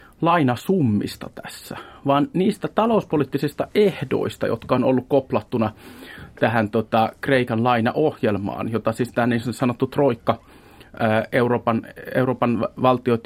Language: Finnish